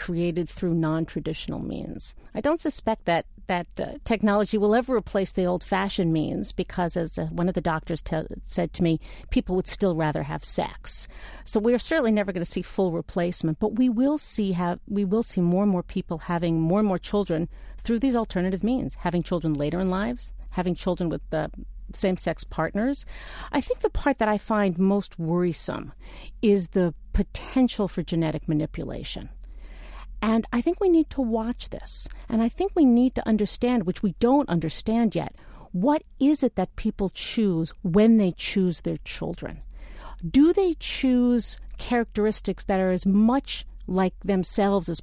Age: 50-69